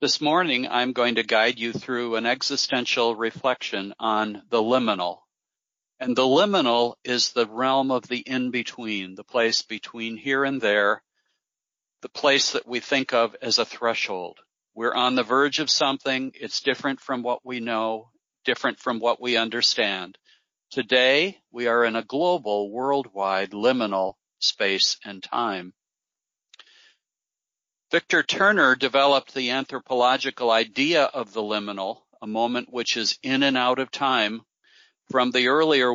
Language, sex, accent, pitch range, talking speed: English, male, American, 115-130 Hz, 145 wpm